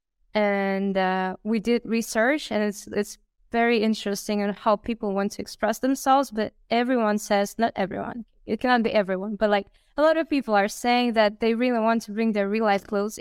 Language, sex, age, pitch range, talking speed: English, female, 20-39, 205-230 Hz, 200 wpm